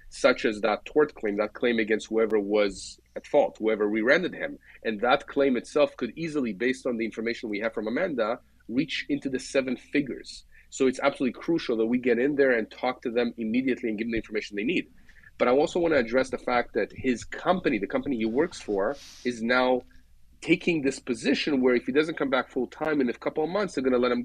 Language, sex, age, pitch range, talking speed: English, male, 30-49, 120-155 Hz, 235 wpm